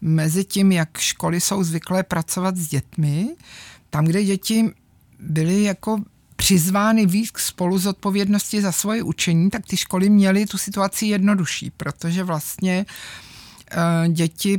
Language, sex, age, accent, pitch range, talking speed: Czech, male, 50-69, native, 165-200 Hz, 130 wpm